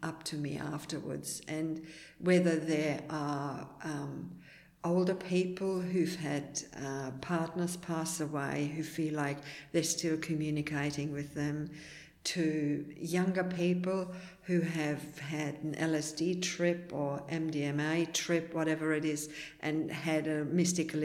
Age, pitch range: 60-79, 150-180 Hz